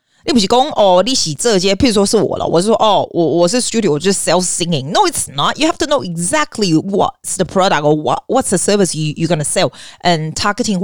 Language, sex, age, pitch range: Chinese, female, 30-49, 150-215 Hz